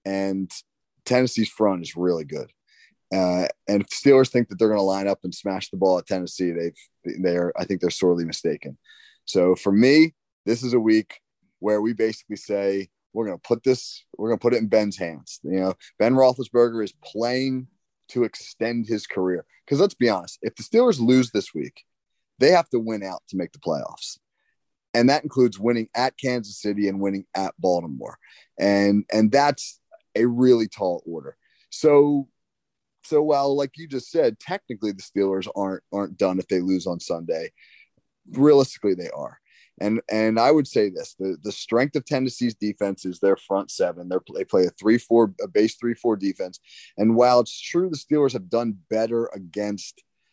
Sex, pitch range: male, 95-125 Hz